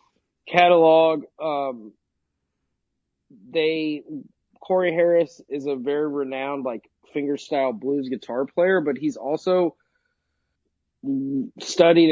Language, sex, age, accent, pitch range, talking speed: English, male, 30-49, American, 130-170 Hz, 90 wpm